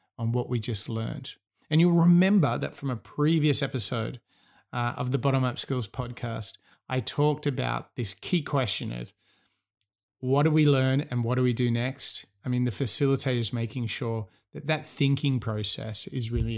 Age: 30-49